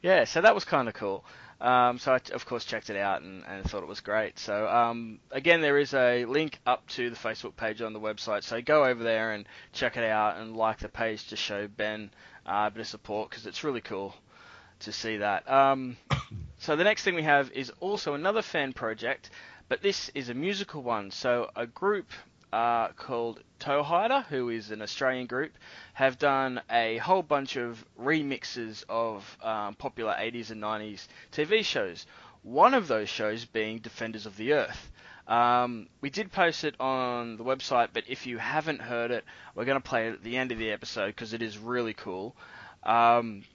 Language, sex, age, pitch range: English, male, 20-39, 110-135 Hz